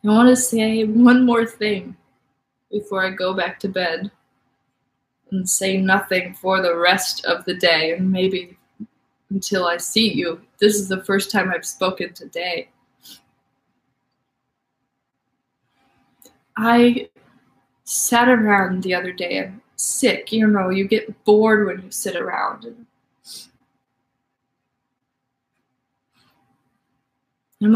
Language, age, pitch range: English, 20-39, 175-220 Hz